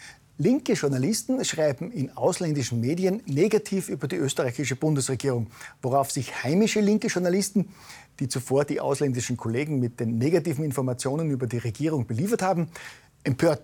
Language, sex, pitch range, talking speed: German, male, 130-180 Hz, 135 wpm